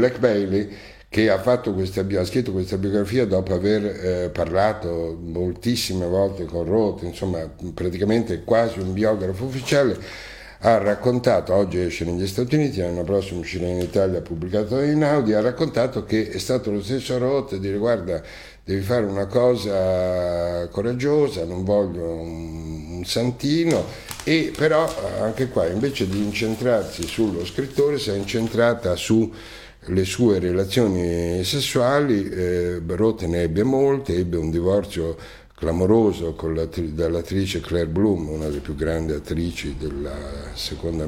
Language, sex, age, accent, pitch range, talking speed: Italian, male, 60-79, native, 85-110 Hz, 140 wpm